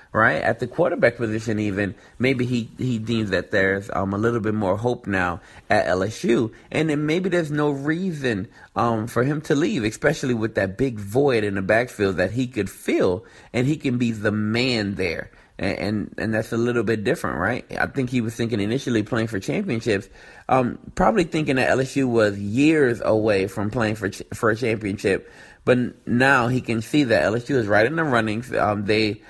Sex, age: male, 30-49